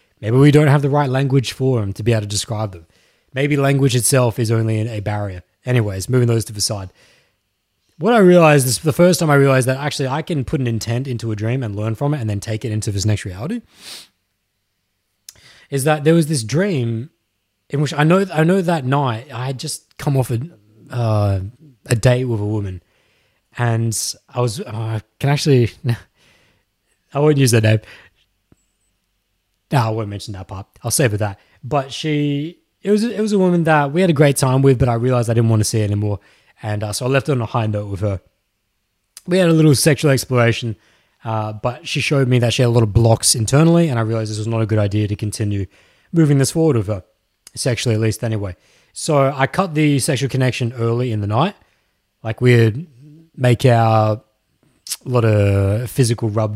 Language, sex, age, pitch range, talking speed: English, male, 20-39, 105-140 Hz, 215 wpm